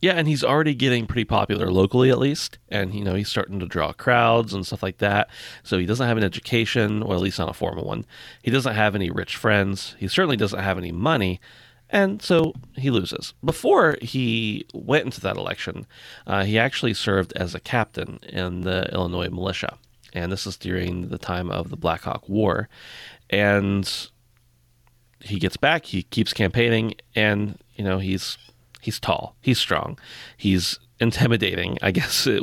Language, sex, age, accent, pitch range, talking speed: English, male, 30-49, American, 95-120 Hz, 185 wpm